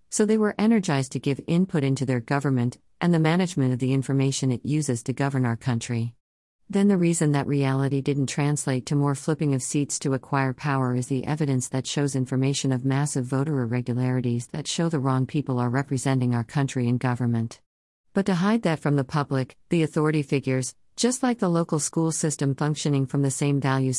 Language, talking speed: English, 200 wpm